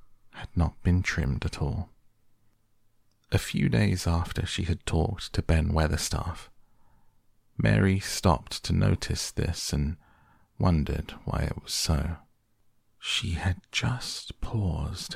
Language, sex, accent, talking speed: English, male, British, 125 wpm